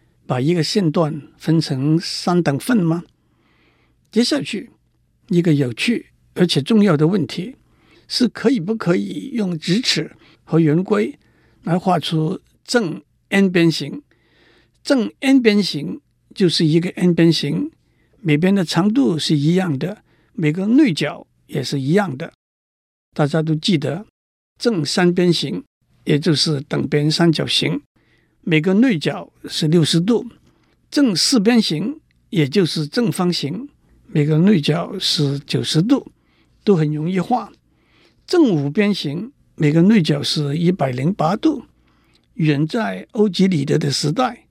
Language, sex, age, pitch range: Chinese, male, 60-79, 150-210 Hz